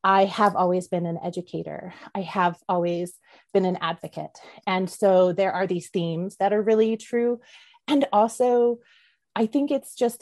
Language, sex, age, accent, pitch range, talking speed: English, female, 30-49, American, 170-200 Hz, 165 wpm